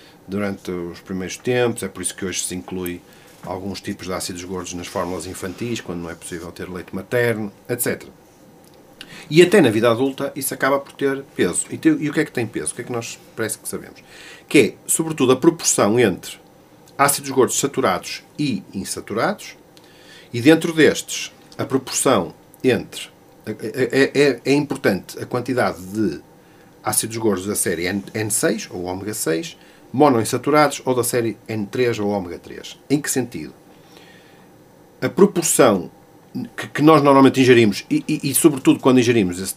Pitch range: 95-135 Hz